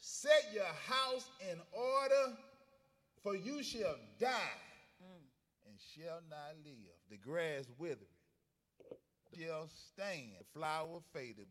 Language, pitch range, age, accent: English, 160-250 Hz, 40-59, American